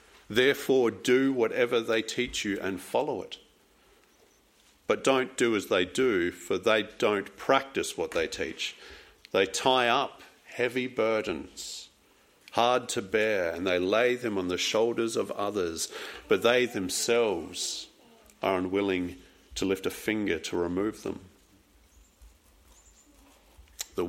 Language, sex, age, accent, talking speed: English, male, 50-69, Australian, 130 wpm